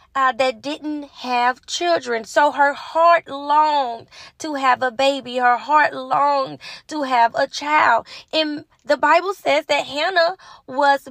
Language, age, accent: English, 10-29, American